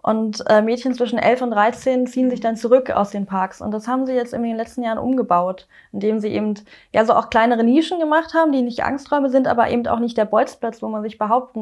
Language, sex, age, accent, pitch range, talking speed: German, female, 20-39, German, 210-245 Hz, 250 wpm